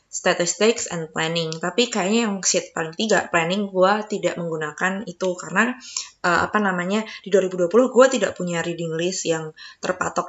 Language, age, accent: Indonesian, 20-39, native